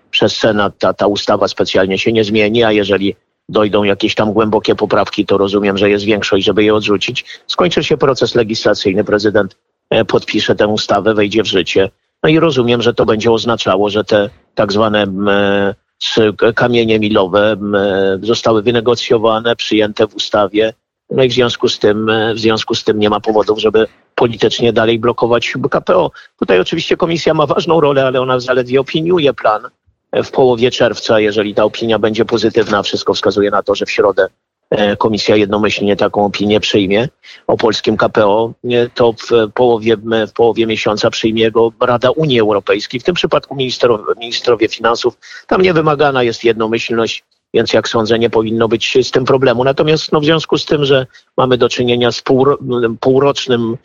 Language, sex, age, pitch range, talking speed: Polish, male, 50-69, 105-125 Hz, 165 wpm